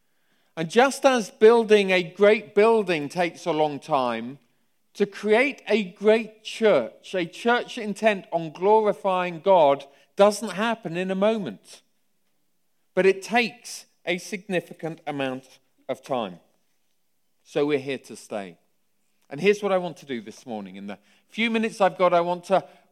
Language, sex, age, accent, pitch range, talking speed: English, male, 40-59, British, 175-215 Hz, 150 wpm